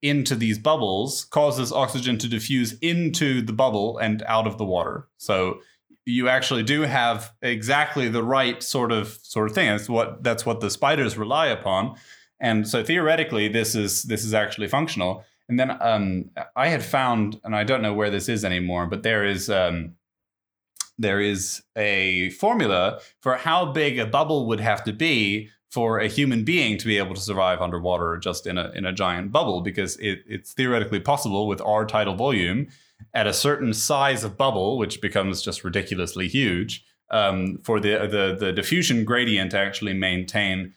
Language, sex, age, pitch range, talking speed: English, male, 20-39, 95-125 Hz, 180 wpm